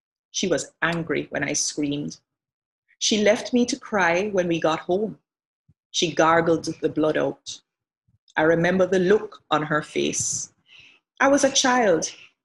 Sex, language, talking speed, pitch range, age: female, English, 150 wpm, 160-205 Hz, 30-49